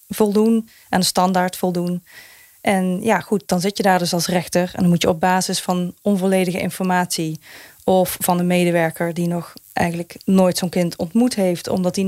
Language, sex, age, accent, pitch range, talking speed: Dutch, female, 20-39, Dutch, 175-210 Hz, 190 wpm